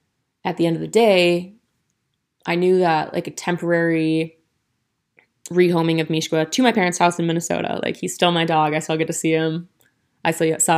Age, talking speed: 20-39, 195 wpm